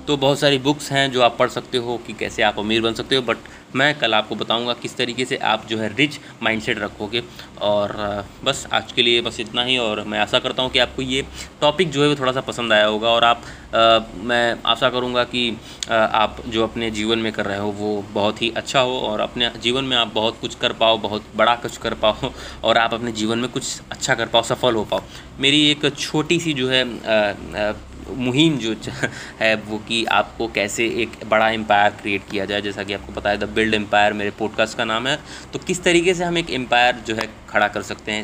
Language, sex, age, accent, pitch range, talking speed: Hindi, male, 20-39, native, 110-130 Hz, 235 wpm